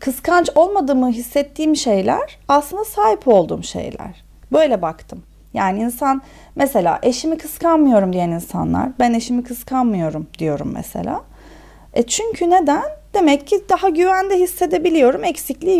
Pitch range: 205-300 Hz